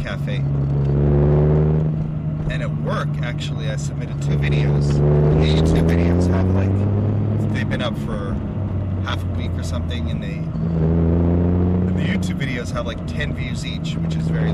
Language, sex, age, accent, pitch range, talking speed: English, male, 30-49, American, 75-115 Hz, 155 wpm